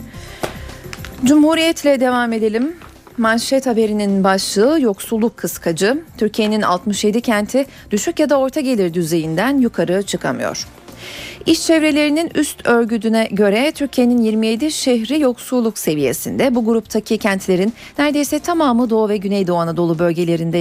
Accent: native